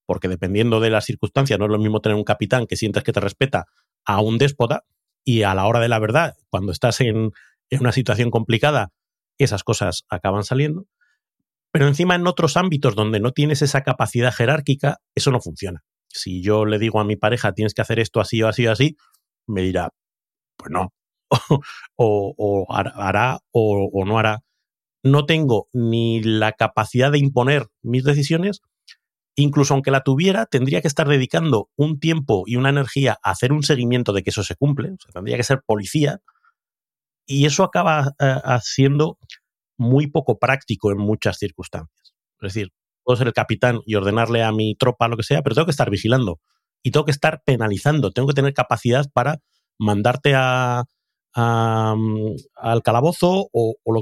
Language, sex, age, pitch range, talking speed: Spanish, male, 30-49, 110-140 Hz, 185 wpm